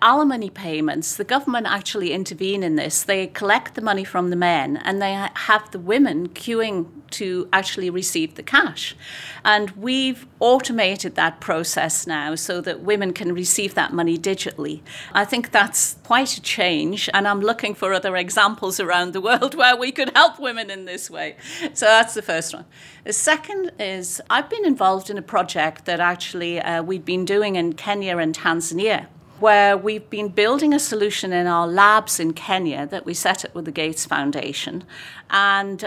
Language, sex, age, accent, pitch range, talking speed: English, female, 50-69, British, 165-210 Hz, 180 wpm